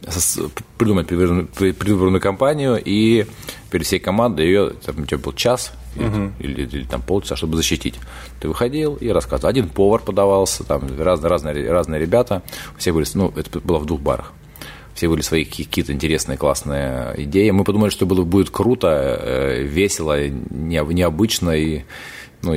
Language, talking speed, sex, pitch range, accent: Russian, 155 wpm, male, 75-100 Hz, native